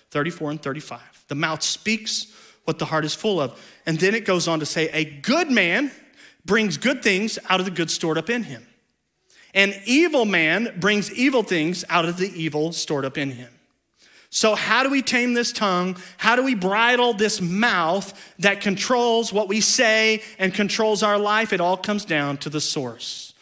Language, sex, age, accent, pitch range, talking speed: English, male, 40-59, American, 150-220 Hz, 195 wpm